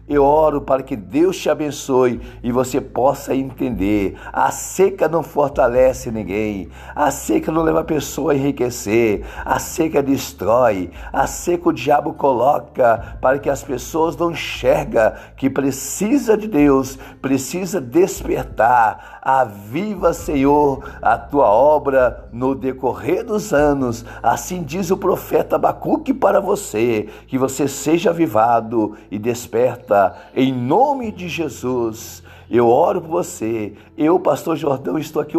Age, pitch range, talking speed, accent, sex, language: 50-69, 120-170 Hz, 135 wpm, Brazilian, male, Portuguese